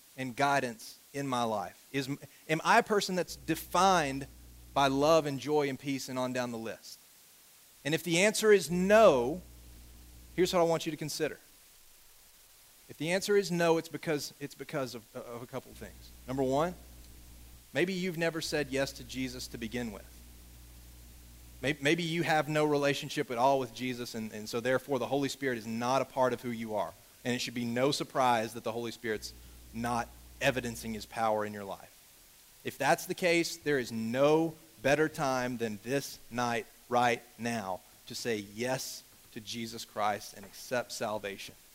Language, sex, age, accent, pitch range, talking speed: English, male, 40-59, American, 115-165 Hz, 185 wpm